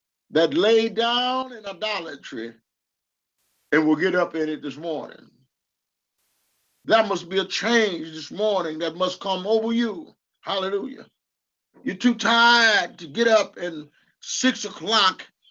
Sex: male